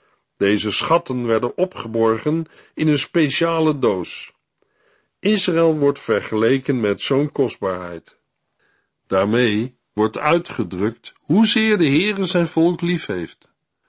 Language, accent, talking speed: Dutch, Dutch, 105 wpm